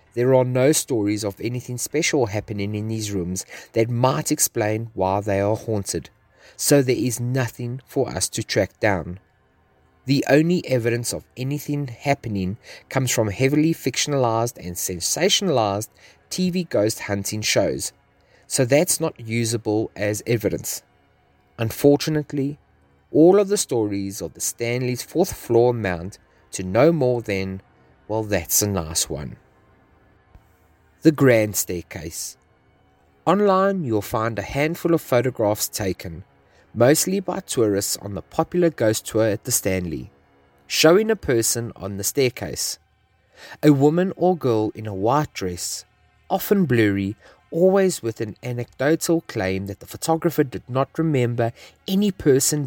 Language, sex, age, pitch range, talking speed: English, male, 30-49, 100-145 Hz, 135 wpm